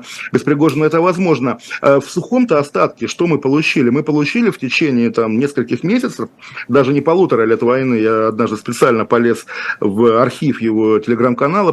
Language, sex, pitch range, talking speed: Russian, male, 115-145 Hz, 155 wpm